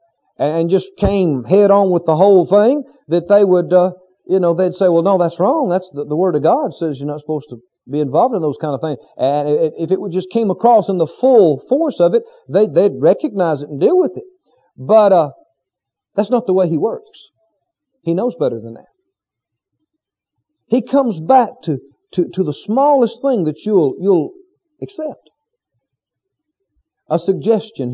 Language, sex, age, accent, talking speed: English, male, 50-69, American, 190 wpm